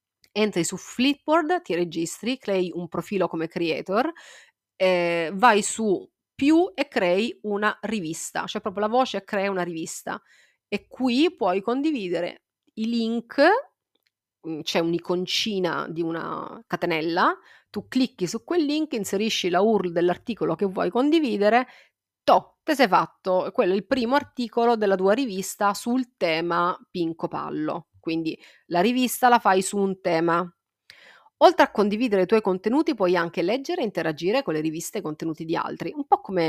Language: Italian